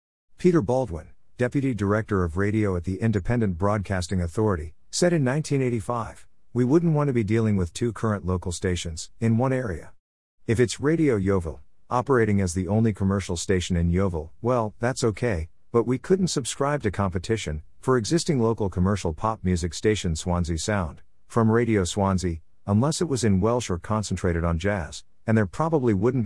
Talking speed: 170 wpm